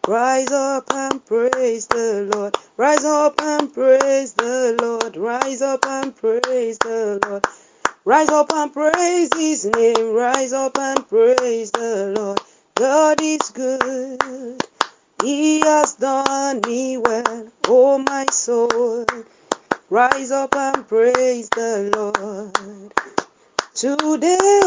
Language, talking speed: English, 115 wpm